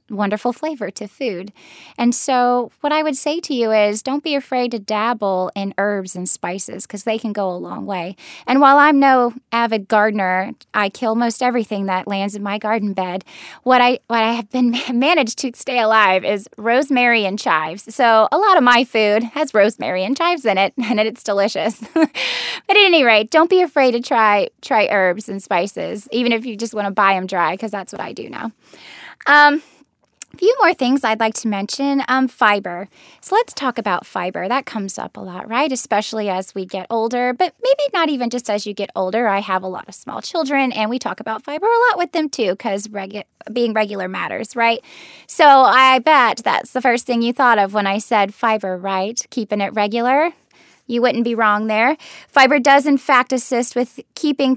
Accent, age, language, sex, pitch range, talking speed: American, 10-29, English, female, 205-265 Hz, 210 wpm